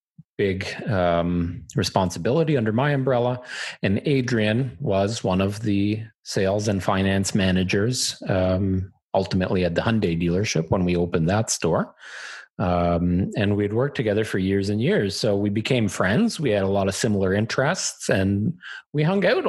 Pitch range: 95-120 Hz